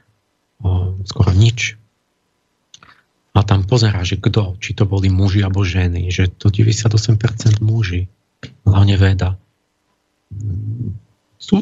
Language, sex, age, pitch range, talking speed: Slovak, male, 50-69, 100-115 Hz, 105 wpm